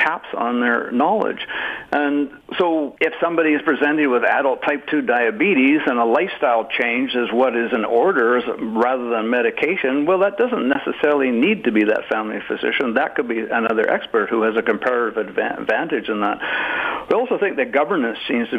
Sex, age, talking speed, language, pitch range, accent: male, 60-79, 180 wpm, English, 120-160 Hz, American